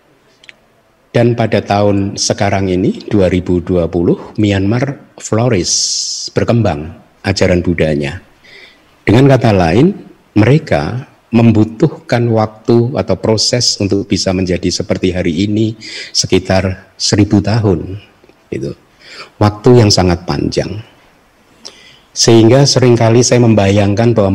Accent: native